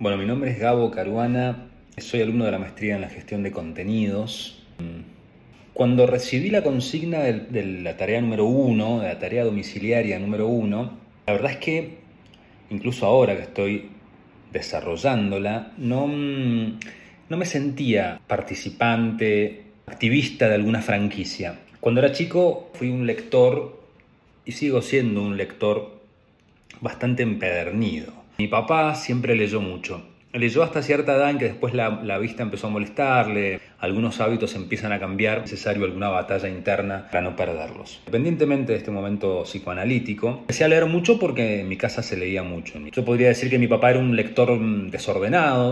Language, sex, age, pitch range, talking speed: Spanish, male, 40-59, 105-130 Hz, 155 wpm